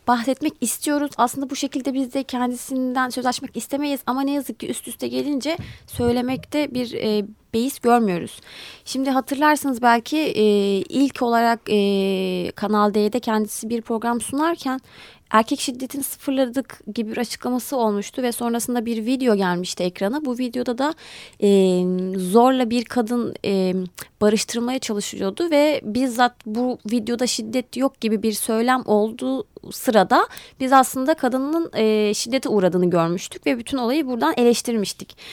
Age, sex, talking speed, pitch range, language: 30-49, female, 135 wpm, 215-275 Hz, Turkish